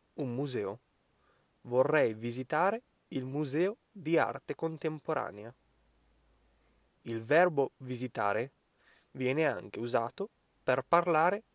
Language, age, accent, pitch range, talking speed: Italian, 20-39, native, 120-165 Hz, 90 wpm